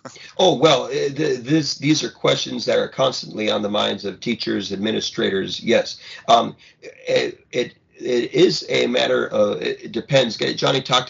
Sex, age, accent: male, 40-59, American